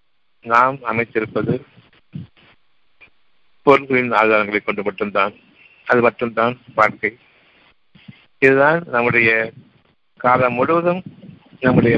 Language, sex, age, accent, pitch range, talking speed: Tamil, male, 60-79, native, 115-135 Hz, 70 wpm